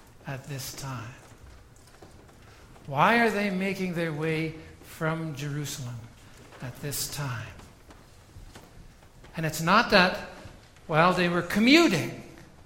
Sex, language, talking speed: male, English, 110 wpm